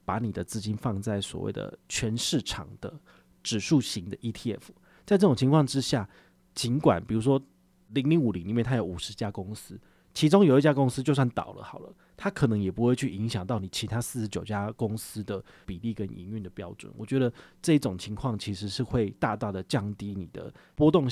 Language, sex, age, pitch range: Chinese, male, 30-49, 100-130 Hz